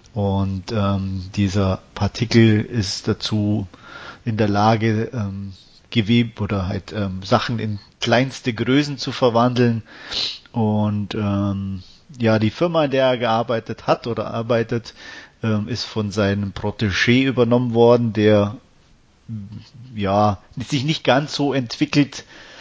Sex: male